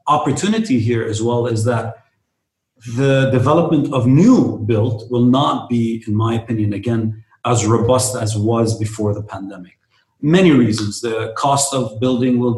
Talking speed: 155 wpm